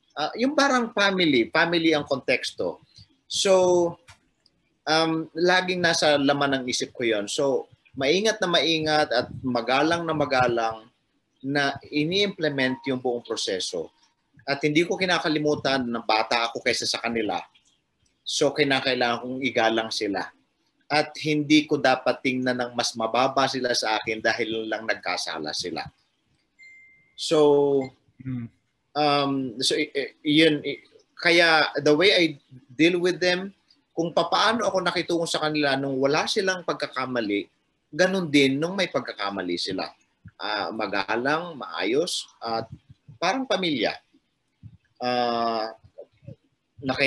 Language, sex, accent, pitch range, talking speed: Filipino, male, native, 125-170 Hz, 120 wpm